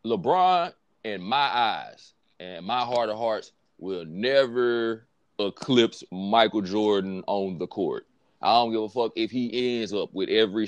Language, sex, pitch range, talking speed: English, male, 110-150 Hz, 155 wpm